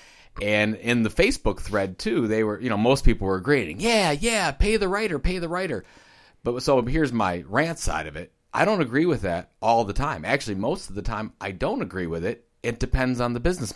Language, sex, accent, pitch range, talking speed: English, male, American, 100-140 Hz, 230 wpm